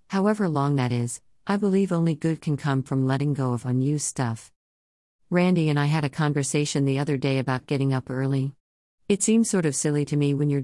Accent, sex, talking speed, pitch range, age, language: American, female, 215 wpm, 130-165 Hz, 50-69, English